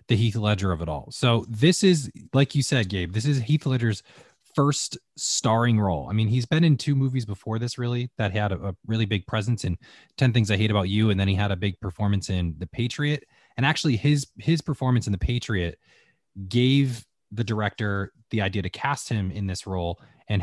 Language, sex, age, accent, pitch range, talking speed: English, male, 20-39, American, 95-125 Hz, 215 wpm